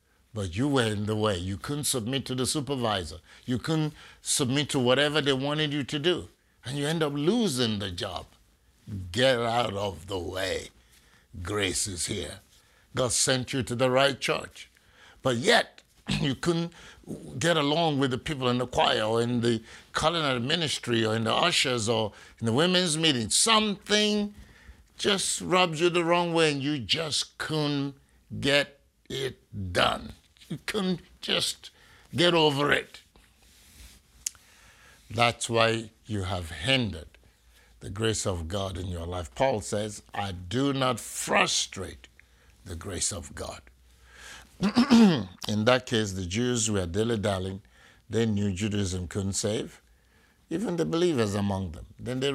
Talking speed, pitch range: 150 wpm, 100-145 Hz